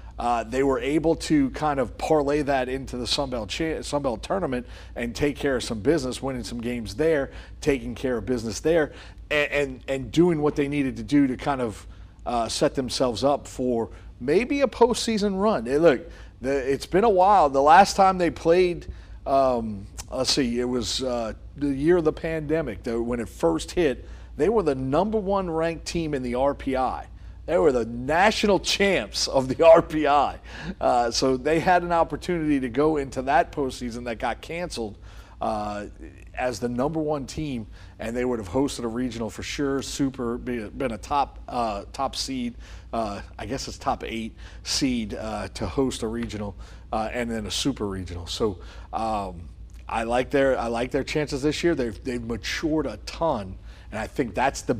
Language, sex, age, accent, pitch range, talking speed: English, male, 40-59, American, 115-150 Hz, 185 wpm